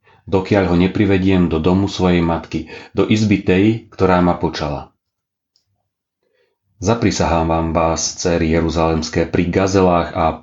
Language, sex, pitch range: Slovak, male, 80-95 Hz